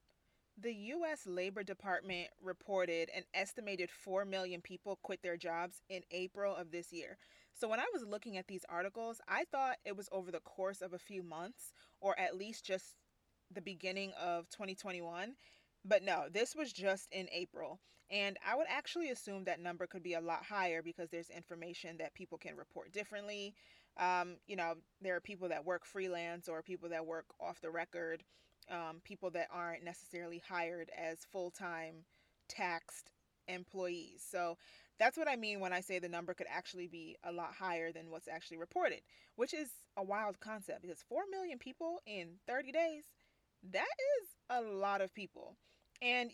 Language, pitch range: English, 175-205 Hz